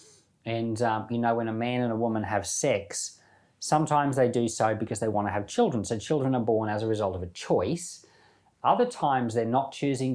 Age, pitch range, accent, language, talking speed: 40-59, 110-145 Hz, Australian, English, 220 wpm